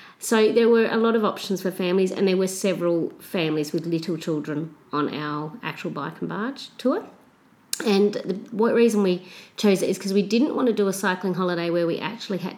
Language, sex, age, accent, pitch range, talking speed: English, female, 40-59, Australian, 160-195 Hz, 210 wpm